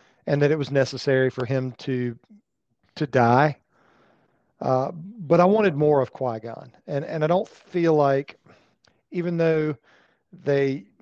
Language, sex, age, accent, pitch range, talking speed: English, male, 40-59, American, 125-150 Hz, 140 wpm